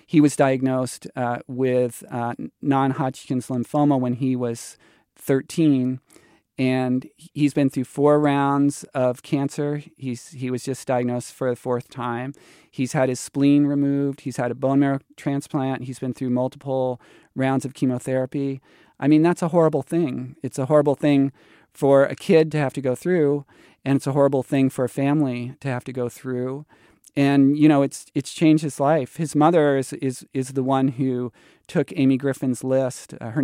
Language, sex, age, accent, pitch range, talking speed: English, male, 40-59, American, 125-140 Hz, 180 wpm